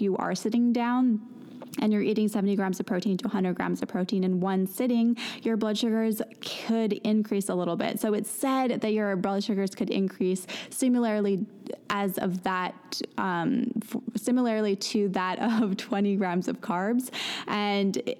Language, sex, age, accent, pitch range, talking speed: English, female, 20-39, American, 190-225 Hz, 165 wpm